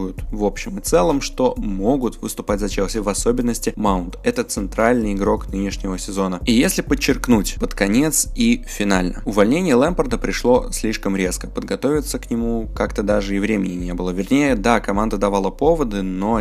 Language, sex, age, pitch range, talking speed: Russian, male, 20-39, 95-115 Hz, 160 wpm